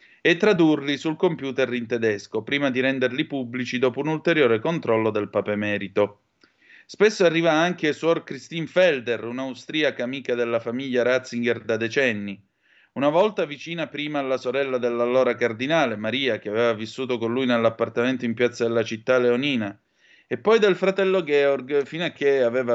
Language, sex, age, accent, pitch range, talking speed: Italian, male, 30-49, native, 115-150 Hz, 155 wpm